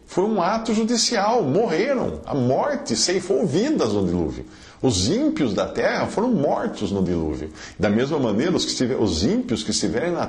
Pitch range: 90-140 Hz